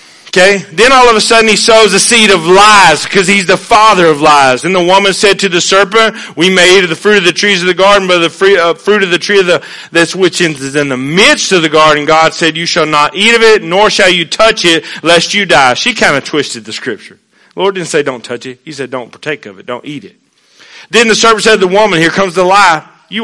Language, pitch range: English, 150-200 Hz